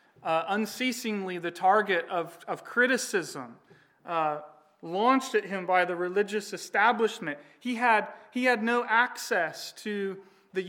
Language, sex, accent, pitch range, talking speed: English, male, American, 165-210 Hz, 130 wpm